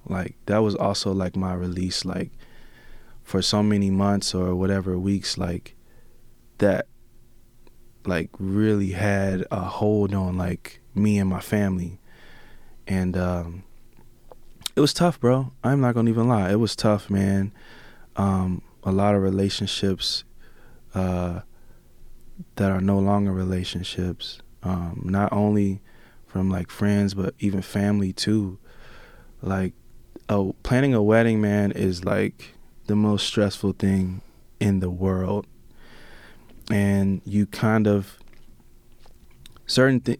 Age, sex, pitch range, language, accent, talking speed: 20-39, male, 95-110 Hz, English, American, 125 wpm